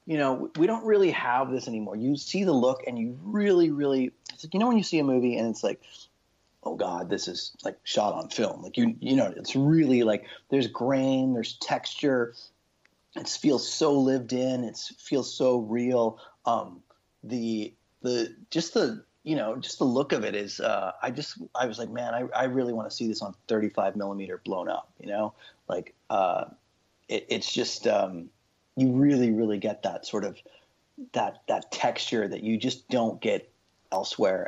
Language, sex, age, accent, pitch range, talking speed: English, male, 30-49, American, 115-155 Hz, 195 wpm